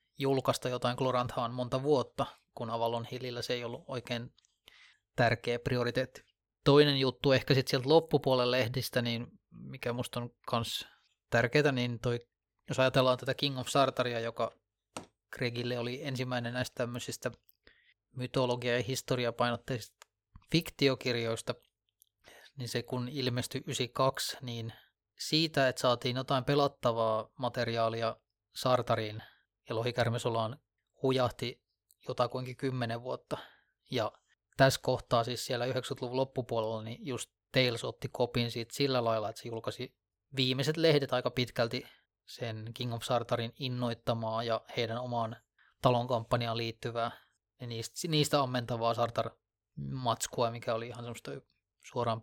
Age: 20-39